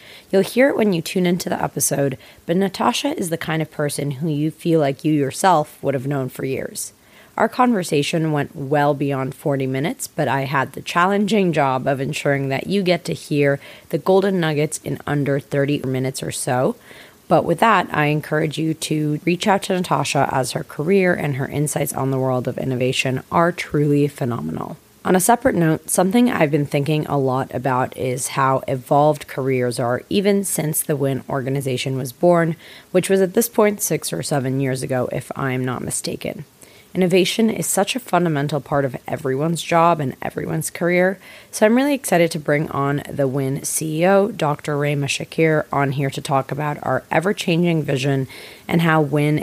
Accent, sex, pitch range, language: American, female, 135-170 Hz, English